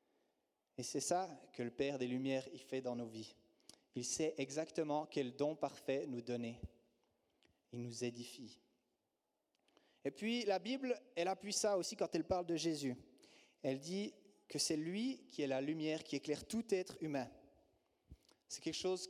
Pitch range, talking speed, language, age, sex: 130-170 Hz, 165 wpm, French, 30-49, male